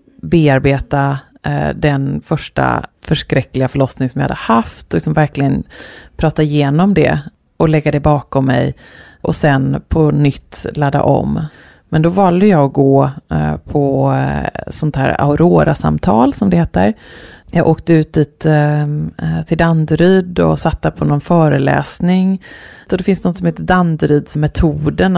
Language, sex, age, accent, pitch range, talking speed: Swedish, female, 30-49, native, 140-165 Hz, 135 wpm